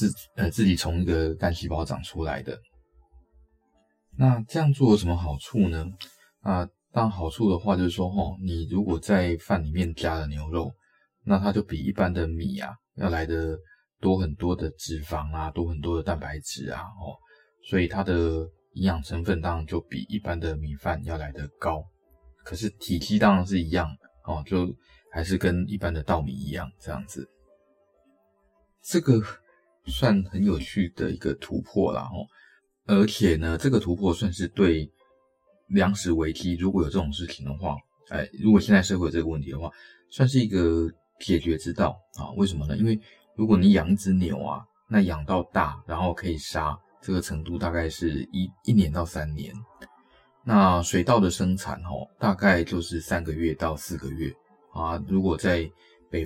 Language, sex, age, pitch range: Chinese, male, 20-39, 75-95 Hz